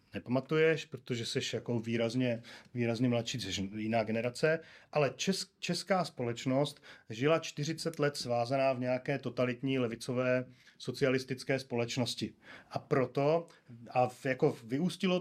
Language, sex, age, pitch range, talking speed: Czech, male, 40-59, 125-150 Hz, 105 wpm